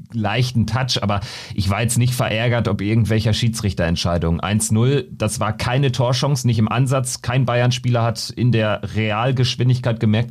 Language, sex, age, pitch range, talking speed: German, male, 40-59, 105-130 Hz, 150 wpm